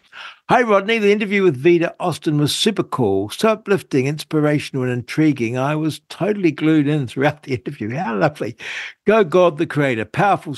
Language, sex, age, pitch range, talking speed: English, male, 60-79, 125-155 Hz, 170 wpm